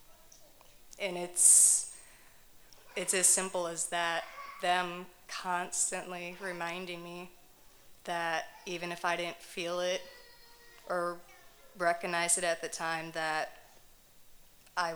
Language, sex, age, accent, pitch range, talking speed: English, female, 20-39, American, 170-190 Hz, 105 wpm